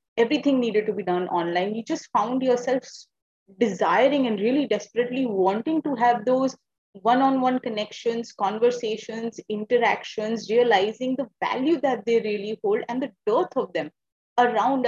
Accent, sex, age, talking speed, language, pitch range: Indian, female, 30-49, 140 wpm, English, 215-265 Hz